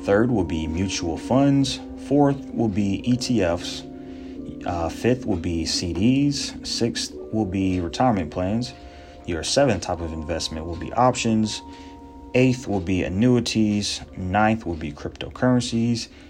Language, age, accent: English, 30-49, American